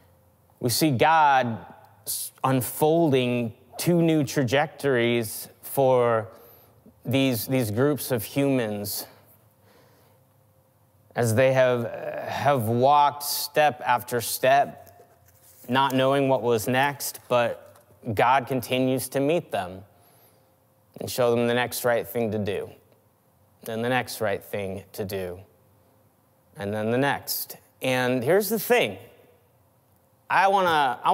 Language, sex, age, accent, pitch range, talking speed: English, male, 30-49, American, 110-130 Hz, 110 wpm